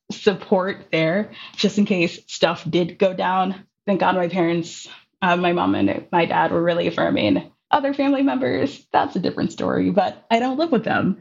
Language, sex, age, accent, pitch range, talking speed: English, female, 20-39, American, 170-210 Hz, 185 wpm